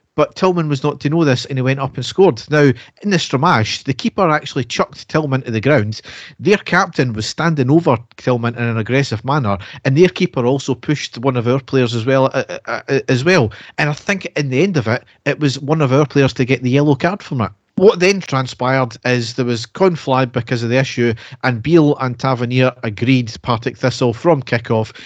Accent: British